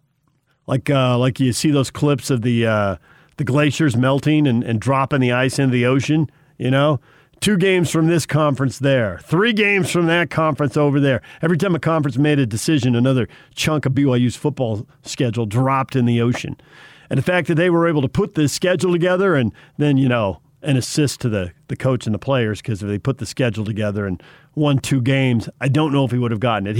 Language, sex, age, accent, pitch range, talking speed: English, male, 50-69, American, 125-155 Hz, 220 wpm